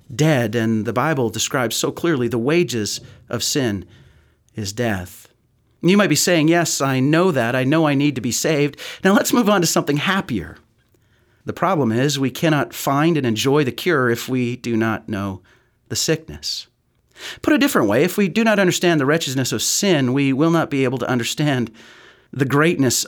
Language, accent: English, American